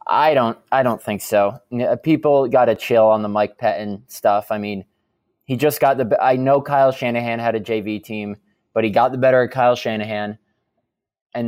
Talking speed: 200 wpm